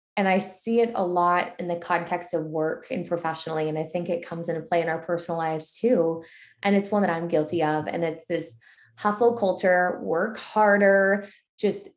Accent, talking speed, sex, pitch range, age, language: American, 200 wpm, female, 170-220 Hz, 20-39, English